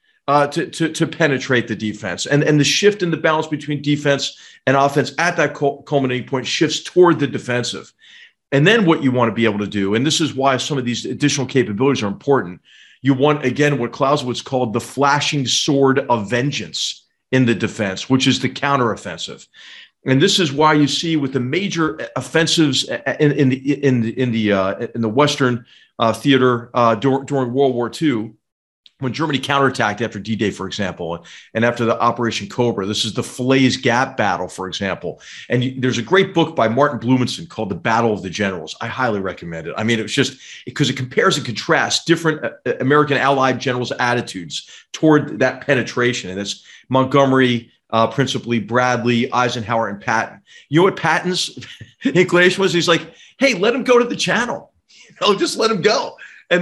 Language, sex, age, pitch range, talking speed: English, male, 40-59, 120-150 Hz, 190 wpm